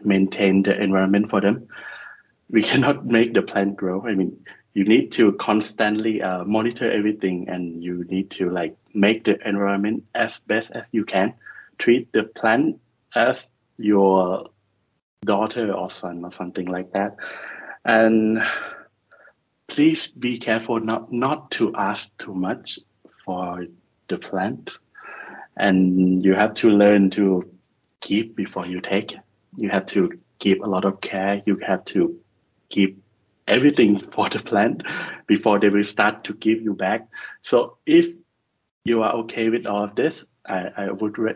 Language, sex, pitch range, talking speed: English, male, 95-110 Hz, 150 wpm